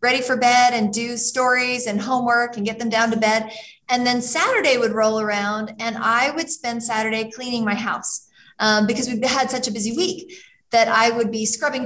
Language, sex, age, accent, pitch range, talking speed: English, female, 30-49, American, 230-290 Hz, 205 wpm